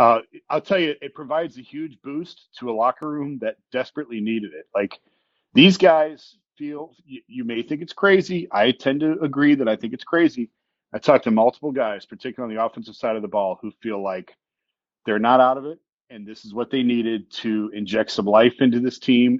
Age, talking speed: 40-59, 215 wpm